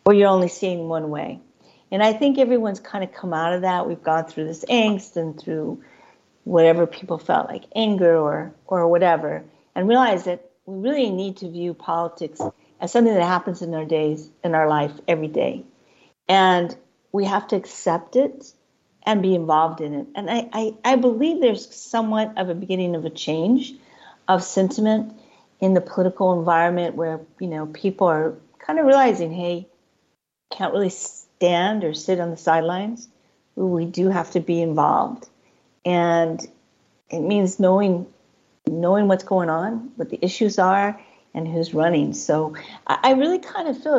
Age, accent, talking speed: 50-69, American, 170 wpm